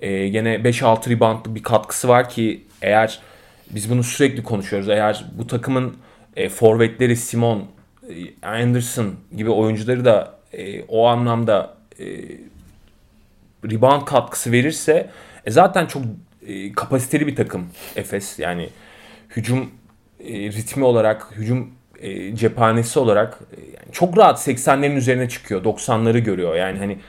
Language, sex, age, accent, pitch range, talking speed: Turkish, male, 30-49, native, 105-135 Hz, 130 wpm